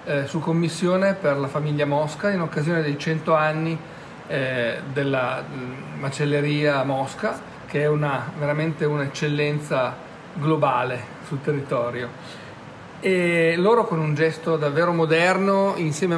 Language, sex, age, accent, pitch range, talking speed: Italian, male, 40-59, native, 150-190 Hz, 120 wpm